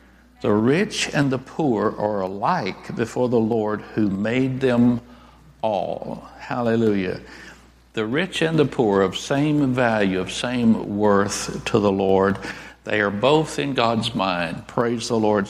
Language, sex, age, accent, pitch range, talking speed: English, male, 60-79, American, 105-125 Hz, 145 wpm